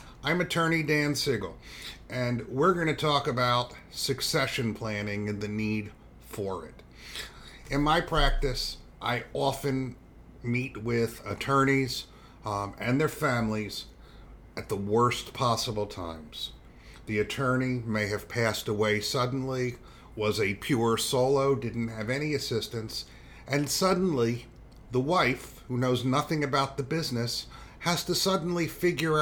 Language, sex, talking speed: English, male, 130 wpm